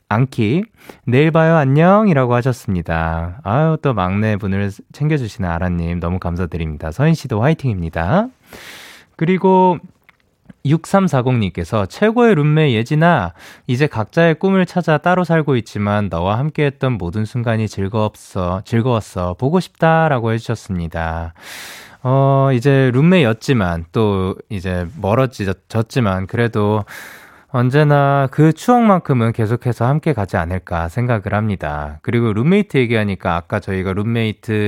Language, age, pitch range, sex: Korean, 20-39, 100-150 Hz, male